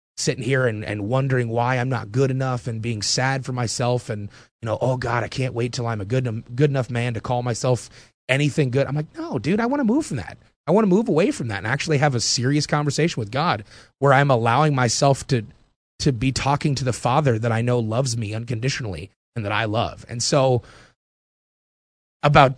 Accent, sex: American, male